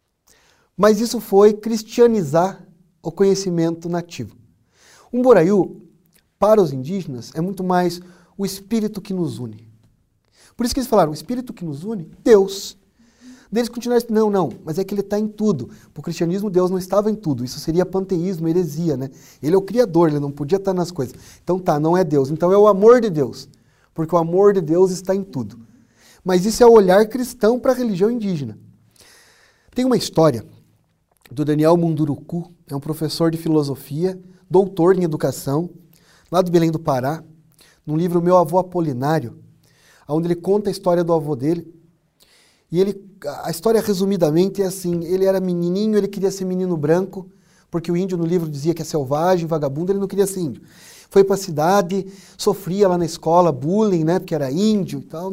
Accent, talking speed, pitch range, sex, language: Brazilian, 190 wpm, 160-195 Hz, male, Portuguese